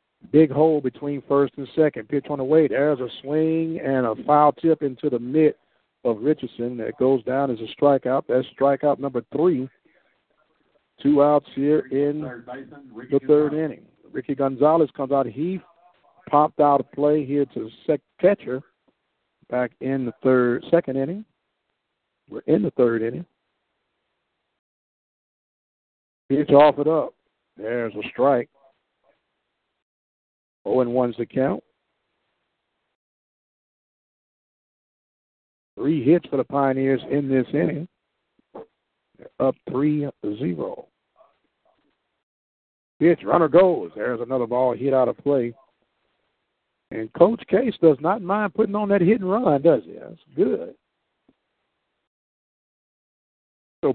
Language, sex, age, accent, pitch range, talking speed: English, male, 60-79, American, 130-160 Hz, 125 wpm